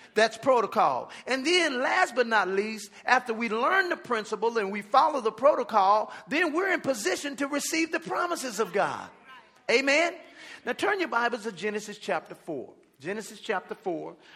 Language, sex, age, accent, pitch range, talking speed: English, male, 40-59, American, 210-275 Hz, 165 wpm